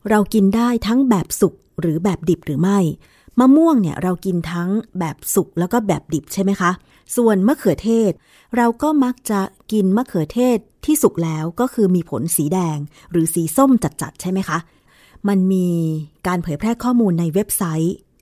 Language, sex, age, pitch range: Thai, female, 20-39, 170-220 Hz